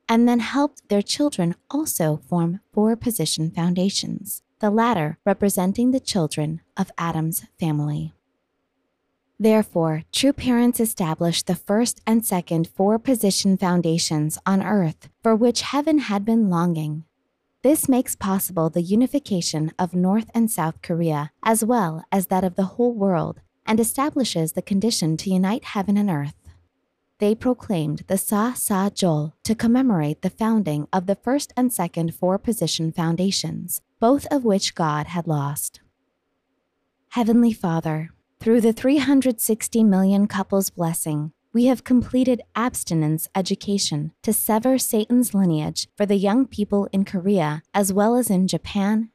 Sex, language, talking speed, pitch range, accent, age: female, English, 140 wpm, 160-225 Hz, American, 20-39